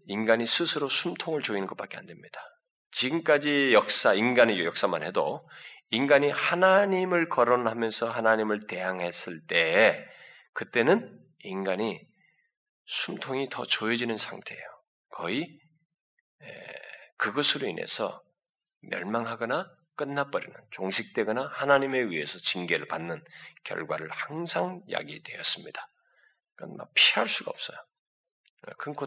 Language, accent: Korean, native